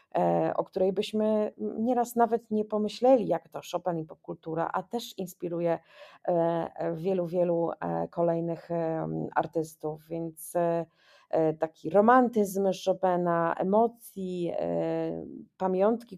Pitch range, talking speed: 160-190 Hz, 95 wpm